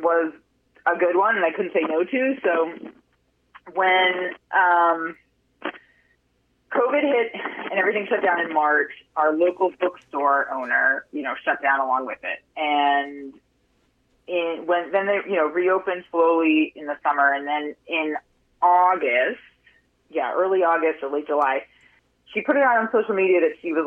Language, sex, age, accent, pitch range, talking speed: English, female, 30-49, American, 150-225 Hz, 160 wpm